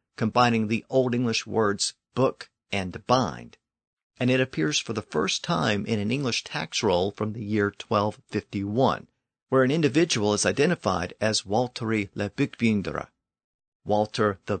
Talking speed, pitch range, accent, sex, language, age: 145 wpm, 100-130 Hz, American, male, English, 50-69